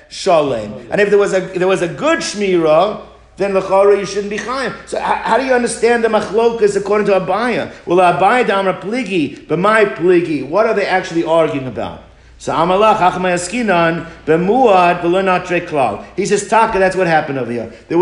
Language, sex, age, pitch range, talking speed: English, male, 50-69, 165-210 Hz, 175 wpm